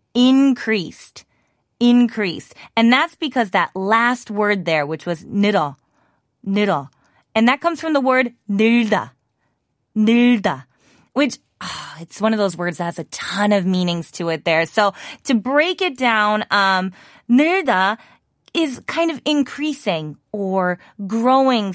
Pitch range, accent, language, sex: 180-245 Hz, American, Korean, female